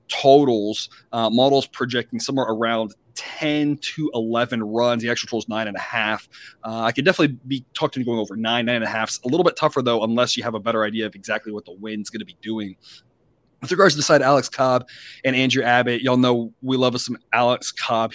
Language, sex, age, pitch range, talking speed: English, male, 20-39, 115-135 Hz, 235 wpm